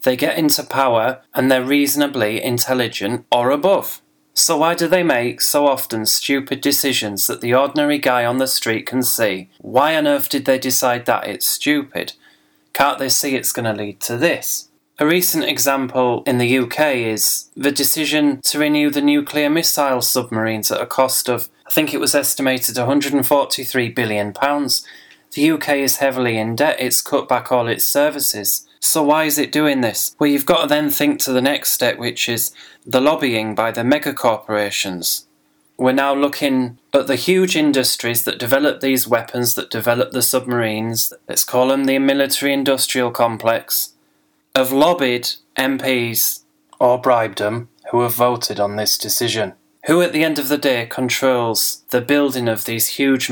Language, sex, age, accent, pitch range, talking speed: English, male, 20-39, British, 120-145 Hz, 175 wpm